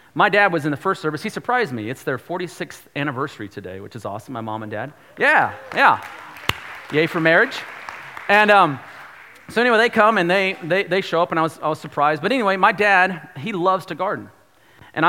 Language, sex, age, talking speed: English, male, 40-59, 215 wpm